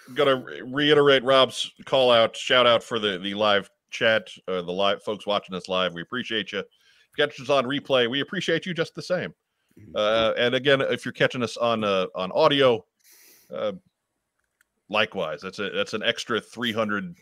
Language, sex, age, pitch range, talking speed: English, male, 40-59, 95-135 Hz, 180 wpm